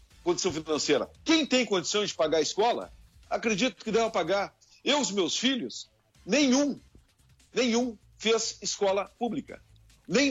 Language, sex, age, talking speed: Portuguese, male, 60-79, 135 wpm